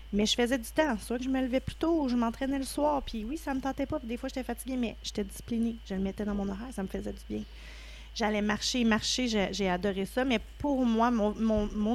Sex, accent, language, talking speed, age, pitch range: female, Canadian, French, 265 wpm, 30-49, 205-255 Hz